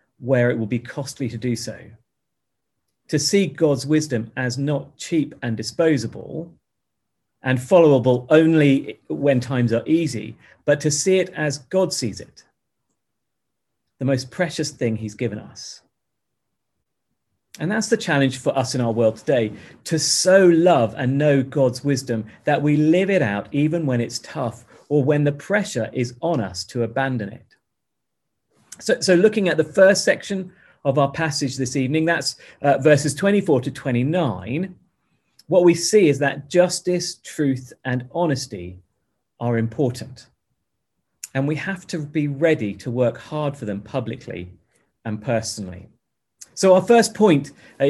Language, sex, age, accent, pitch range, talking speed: English, male, 40-59, British, 120-160 Hz, 155 wpm